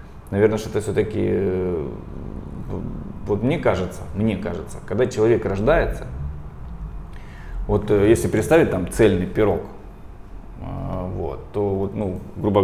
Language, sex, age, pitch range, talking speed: Russian, male, 20-39, 95-115 Hz, 110 wpm